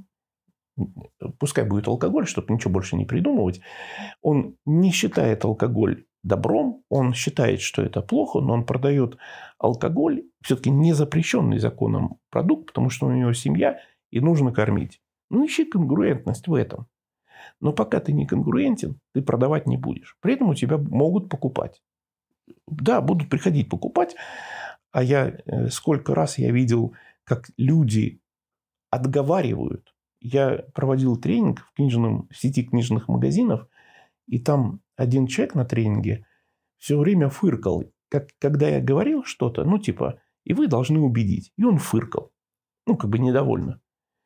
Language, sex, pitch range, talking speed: Russian, male, 120-160 Hz, 135 wpm